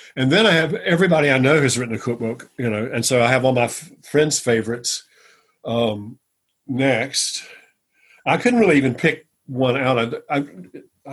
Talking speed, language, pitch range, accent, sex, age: 180 wpm, English, 115-140 Hz, American, male, 50-69